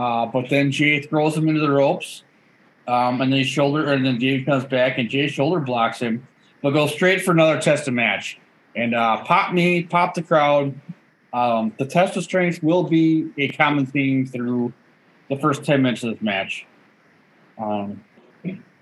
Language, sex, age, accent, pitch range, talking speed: English, male, 20-39, American, 125-160 Hz, 185 wpm